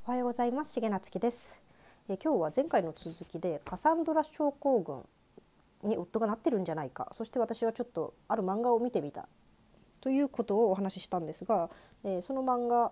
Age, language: 40-59, Japanese